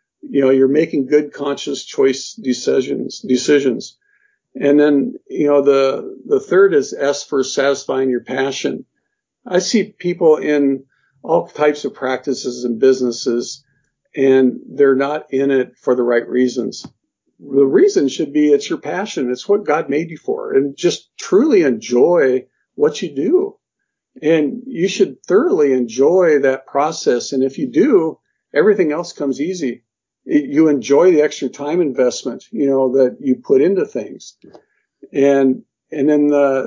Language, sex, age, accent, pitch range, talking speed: English, male, 50-69, American, 135-200 Hz, 150 wpm